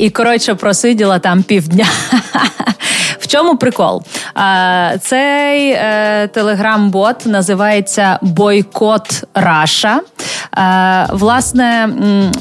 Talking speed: 70 wpm